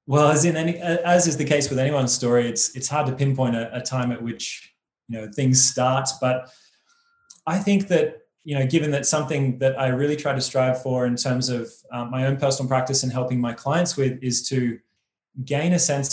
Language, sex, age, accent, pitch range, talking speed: English, male, 20-39, Australian, 125-155 Hz, 220 wpm